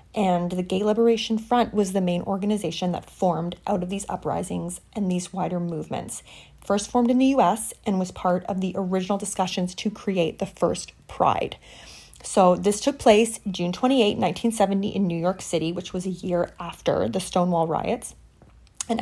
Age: 30-49